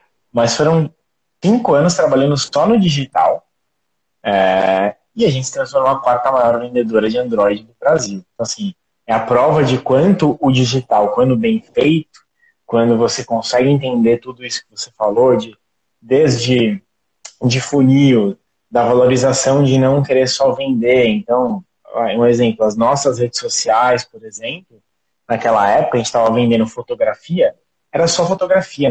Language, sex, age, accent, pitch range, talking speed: Portuguese, male, 20-39, Brazilian, 120-165 Hz, 150 wpm